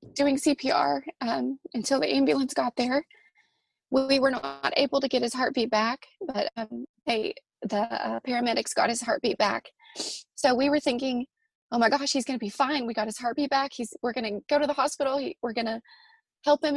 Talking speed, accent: 210 wpm, American